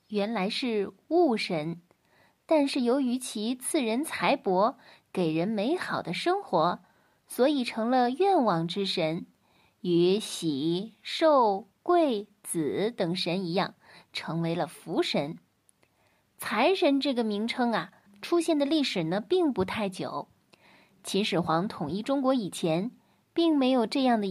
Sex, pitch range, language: female, 190-295 Hz, Chinese